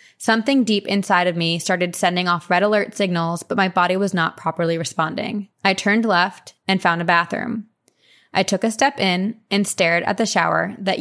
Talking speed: 195 wpm